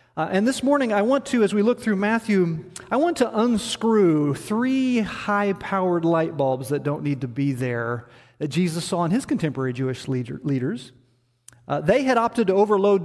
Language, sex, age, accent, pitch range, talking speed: English, male, 40-59, American, 135-215 Hz, 185 wpm